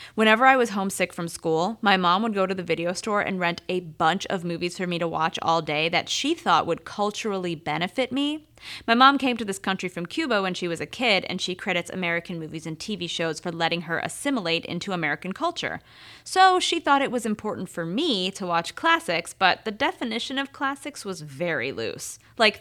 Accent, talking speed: American, 215 wpm